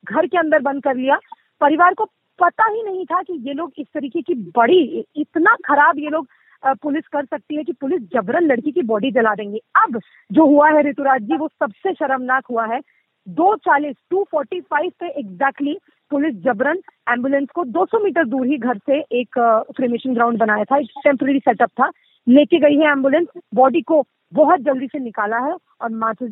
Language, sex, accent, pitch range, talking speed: Hindi, female, native, 260-320 Hz, 185 wpm